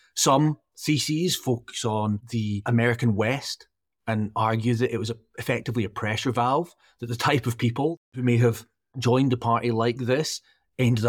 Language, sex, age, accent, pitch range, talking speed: English, male, 30-49, British, 115-140 Hz, 160 wpm